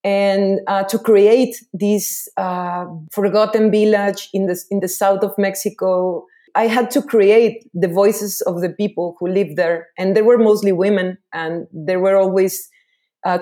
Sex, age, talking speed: female, 30-49, 165 wpm